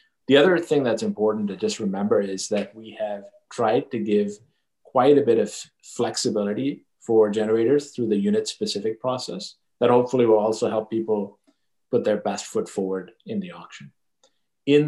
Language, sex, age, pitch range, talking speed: English, male, 30-49, 105-120 Hz, 165 wpm